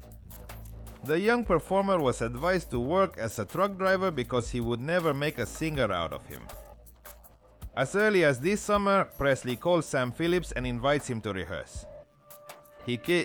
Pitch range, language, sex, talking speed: 115-180 Hz, English, male, 165 wpm